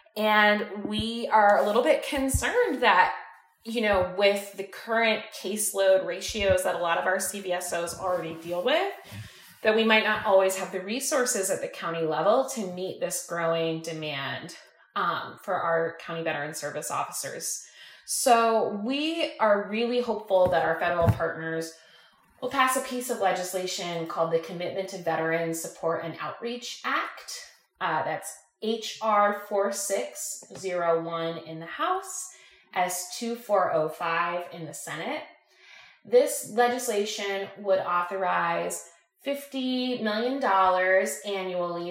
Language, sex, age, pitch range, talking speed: English, female, 20-39, 170-225 Hz, 130 wpm